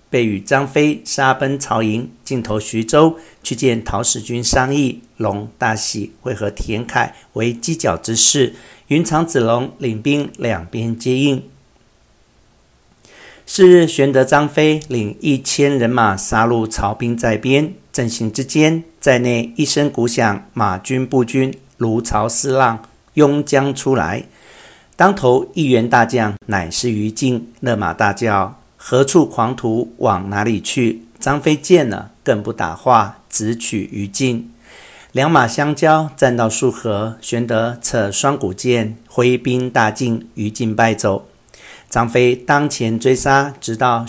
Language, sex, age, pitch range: Chinese, male, 50-69, 110-135 Hz